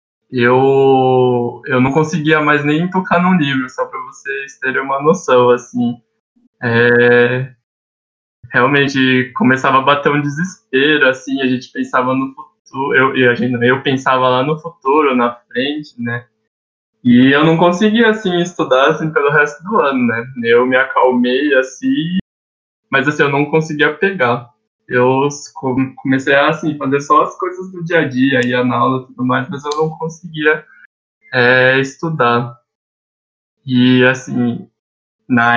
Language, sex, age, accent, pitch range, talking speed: Portuguese, male, 10-29, Brazilian, 125-155 Hz, 150 wpm